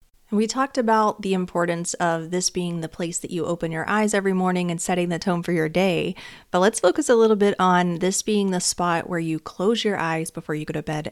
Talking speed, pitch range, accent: 245 wpm, 170-200 Hz, American